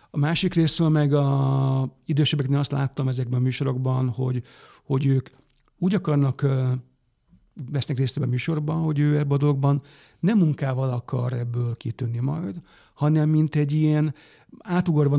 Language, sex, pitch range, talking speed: Hungarian, male, 130-150 Hz, 140 wpm